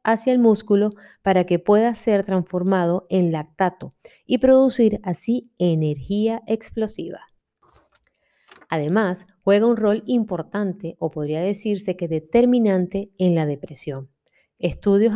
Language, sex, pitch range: Spanish, female, 170-215 Hz